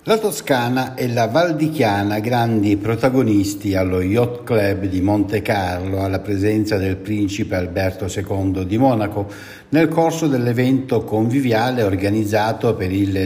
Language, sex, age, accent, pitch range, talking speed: Italian, male, 60-79, native, 100-140 Hz, 125 wpm